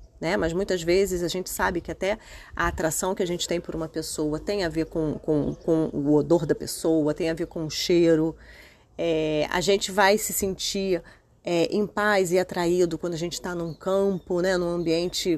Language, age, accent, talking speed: Portuguese, 30-49, Brazilian, 205 wpm